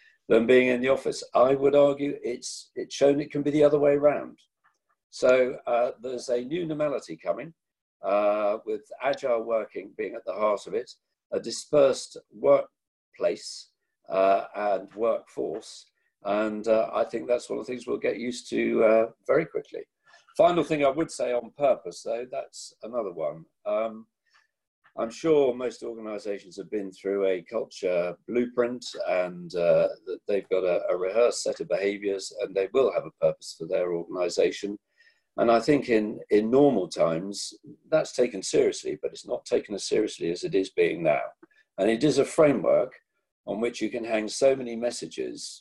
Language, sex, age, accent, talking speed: English, male, 50-69, British, 170 wpm